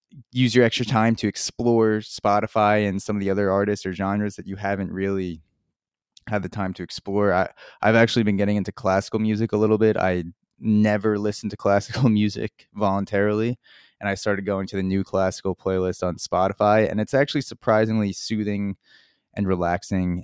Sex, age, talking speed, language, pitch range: male, 20-39, 180 wpm, English, 90-105 Hz